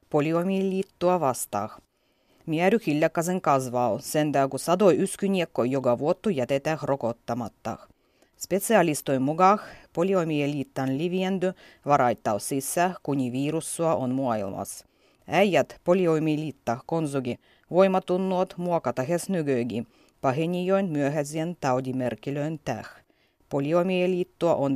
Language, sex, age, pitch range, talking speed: Finnish, female, 30-49, 135-180 Hz, 85 wpm